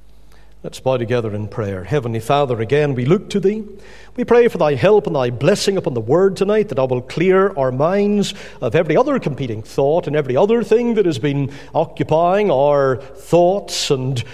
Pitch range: 125-190 Hz